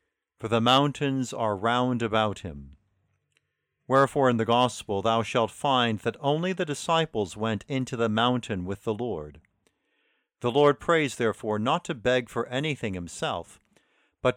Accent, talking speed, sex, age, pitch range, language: American, 150 wpm, male, 50-69, 105-140 Hz, English